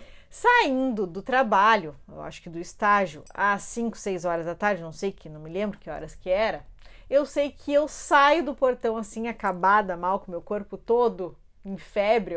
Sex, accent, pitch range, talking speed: female, Brazilian, 200-270 Hz, 195 wpm